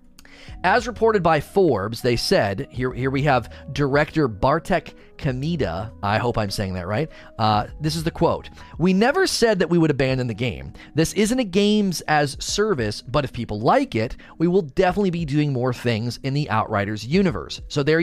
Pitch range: 125-185 Hz